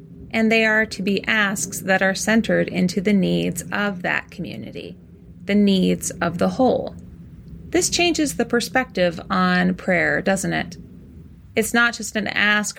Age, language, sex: 30-49, English, female